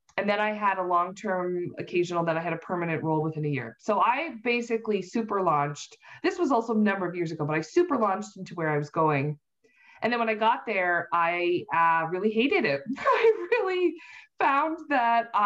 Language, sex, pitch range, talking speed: English, female, 170-225 Hz, 205 wpm